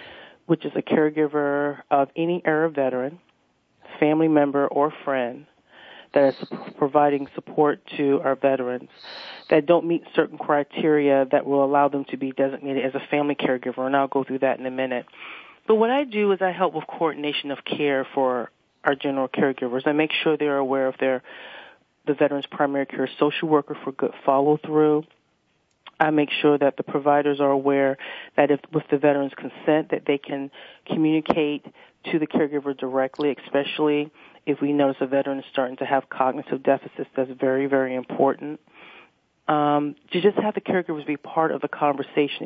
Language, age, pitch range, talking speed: English, 40-59, 135-155 Hz, 175 wpm